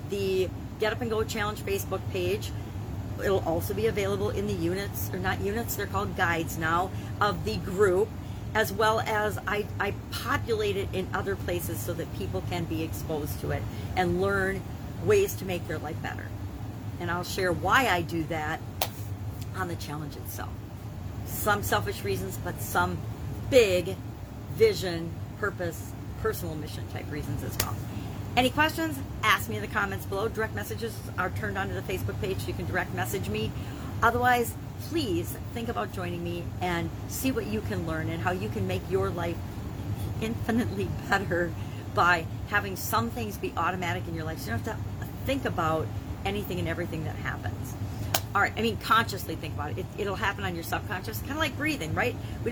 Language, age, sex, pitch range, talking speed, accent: English, 40-59, female, 100-115 Hz, 180 wpm, American